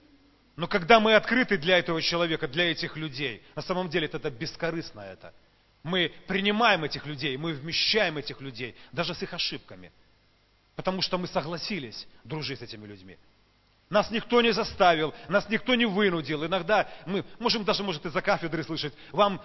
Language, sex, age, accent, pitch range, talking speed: Russian, male, 40-59, native, 125-190 Hz, 160 wpm